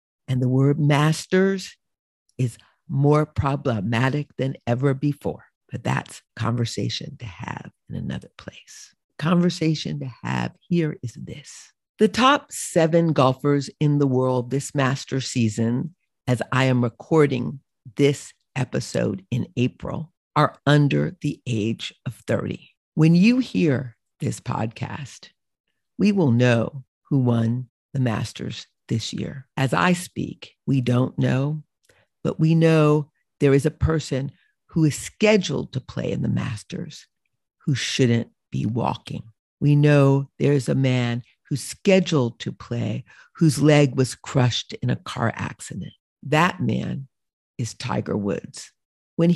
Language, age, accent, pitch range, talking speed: English, 50-69, American, 125-155 Hz, 135 wpm